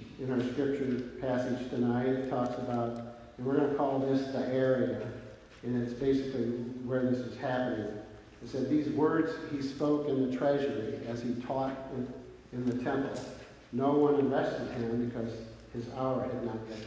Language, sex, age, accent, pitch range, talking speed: English, male, 50-69, American, 120-135 Hz, 165 wpm